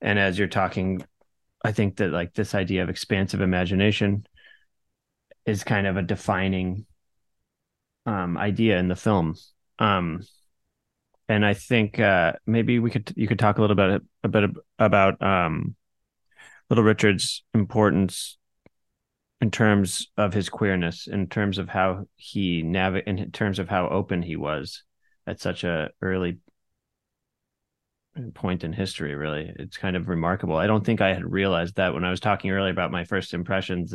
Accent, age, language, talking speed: American, 30-49, English, 160 wpm